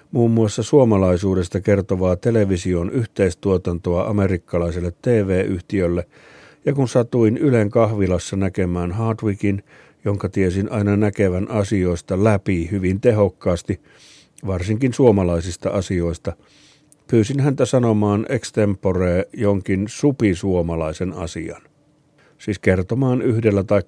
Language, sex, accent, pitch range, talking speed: Finnish, male, native, 90-115 Hz, 95 wpm